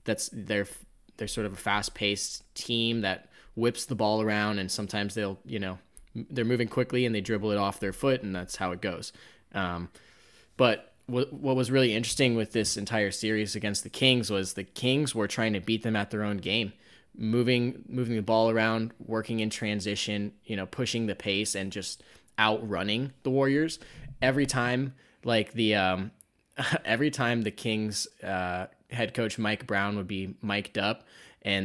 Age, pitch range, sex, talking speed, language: 10-29, 100-120 Hz, male, 180 wpm, English